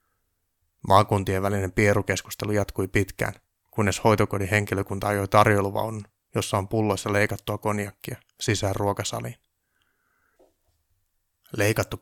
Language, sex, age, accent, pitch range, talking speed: Finnish, male, 30-49, native, 95-105 Hz, 90 wpm